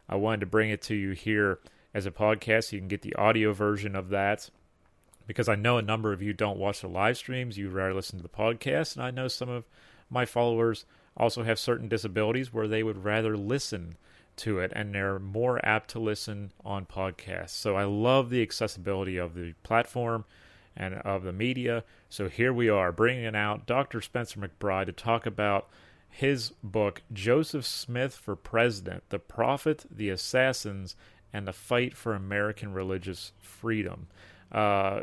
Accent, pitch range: American, 95-115 Hz